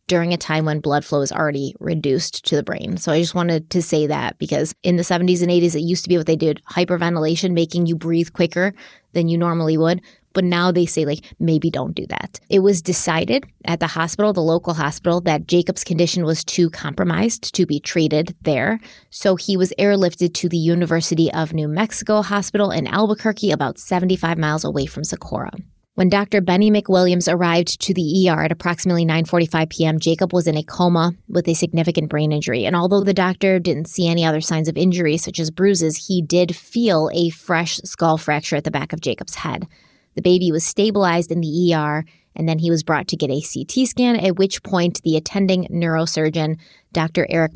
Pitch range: 160-185 Hz